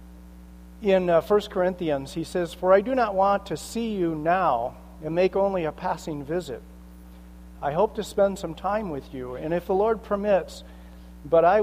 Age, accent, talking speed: 50-69, American, 185 wpm